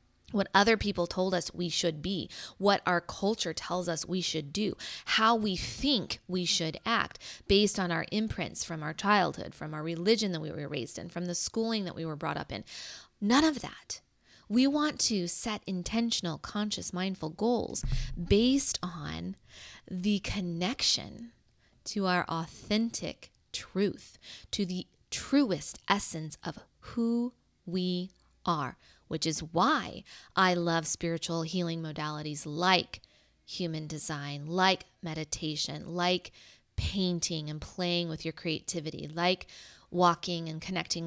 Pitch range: 160-200 Hz